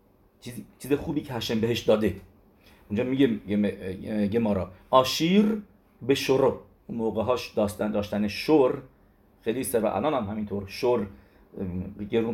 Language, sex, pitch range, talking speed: English, male, 105-145 Hz, 125 wpm